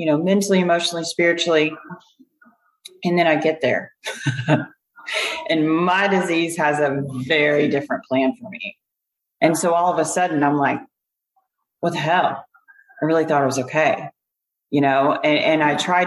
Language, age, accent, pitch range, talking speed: English, 30-49, American, 150-200 Hz, 160 wpm